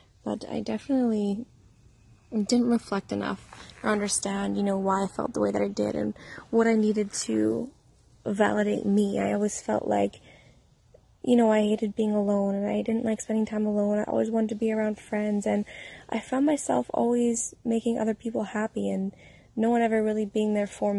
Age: 20-39